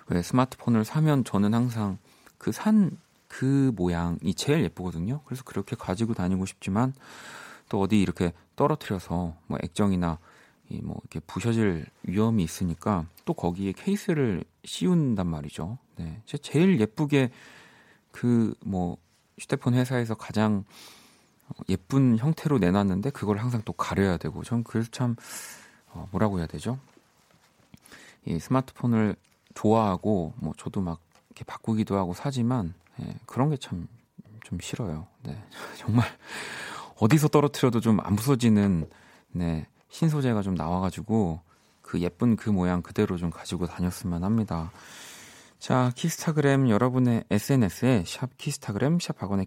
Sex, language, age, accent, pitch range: male, Korean, 40-59, native, 90-130 Hz